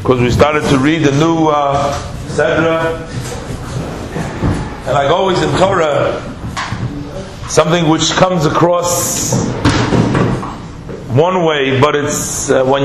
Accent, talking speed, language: American, 105 wpm, English